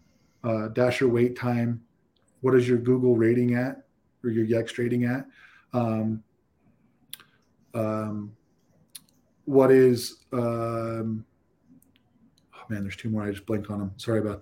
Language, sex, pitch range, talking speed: English, male, 115-140 Hz, 135 wpm